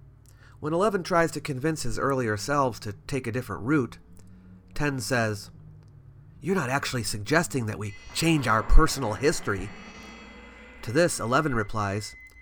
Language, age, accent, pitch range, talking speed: English, 30-49, American, 95-140 Hz, 140 wpm